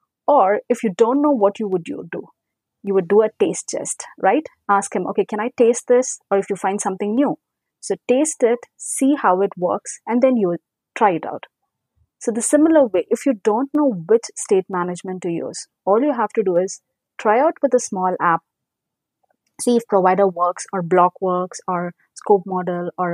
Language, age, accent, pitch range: English, 30-49, Indian, 185-240 Hz